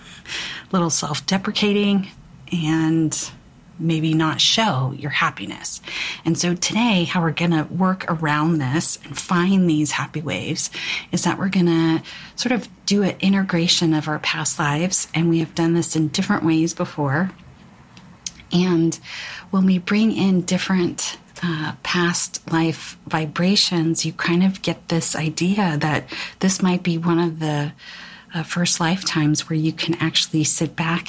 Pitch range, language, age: 155-185 Hz, English, 40-59